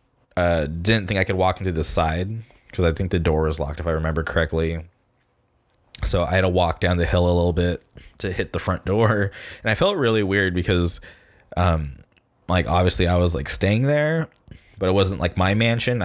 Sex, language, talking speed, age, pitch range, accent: male, English, 210 wpm, 20-39, 85-105 Hz, American